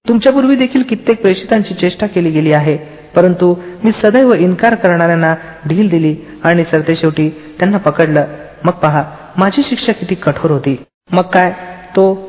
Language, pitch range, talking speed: Marathi, 155-200 Hz, 70 wpm